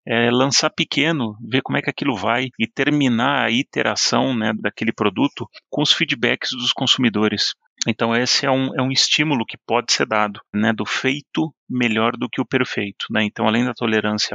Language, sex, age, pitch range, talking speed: Portuguese, male, 30-49, 110-130 Hz, 180 wpm